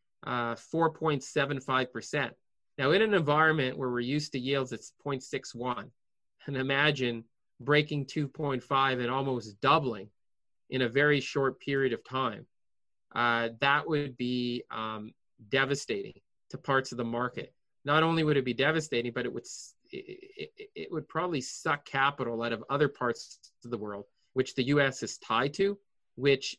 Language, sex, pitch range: English, male, 120-150 Hz